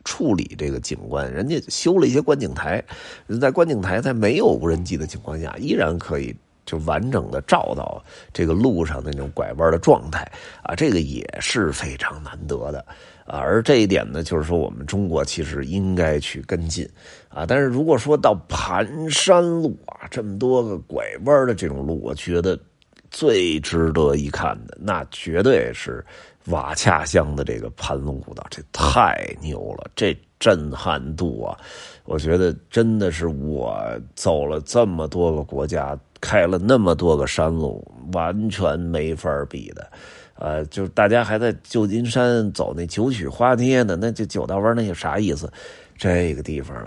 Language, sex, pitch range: Chinese, male, 75-110 Hz